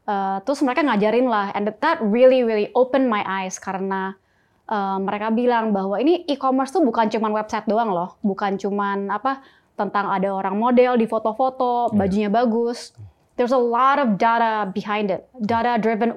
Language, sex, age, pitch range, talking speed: Indonesian, female, 20-39, 200-245 Hz, 165 wpm